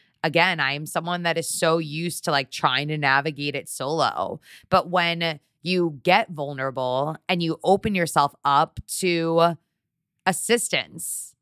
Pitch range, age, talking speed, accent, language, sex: 160-210 Hz, 20-39, 140 wpm, American, English, female